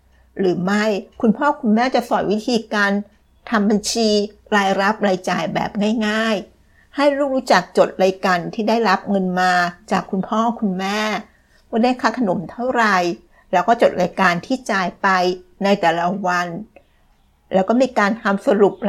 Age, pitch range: 60-79, 185-230 Hz